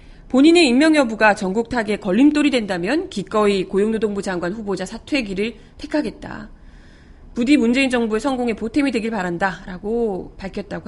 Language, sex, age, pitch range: Korean, female, 40-59, 195-275 Hz